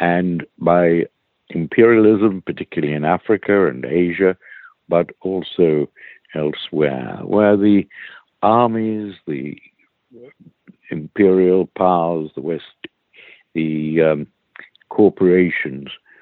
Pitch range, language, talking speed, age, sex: 80-95 Hz, English, 80 wpm, 60-79, male